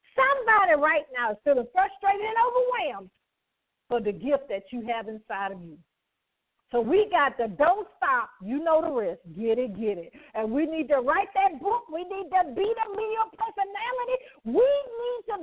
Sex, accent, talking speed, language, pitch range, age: female, American, 185 wpm, English, 235-360 Hz, 50-69